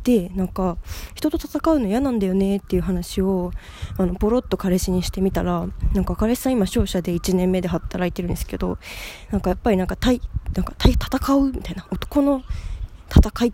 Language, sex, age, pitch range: Japanese, female, 20-39, 175-220 Hz